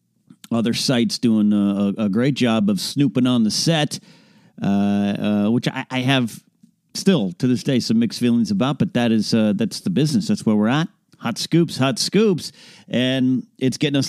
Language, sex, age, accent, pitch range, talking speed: English, male, 40-59, American, 115-195 Hz, 190 wpm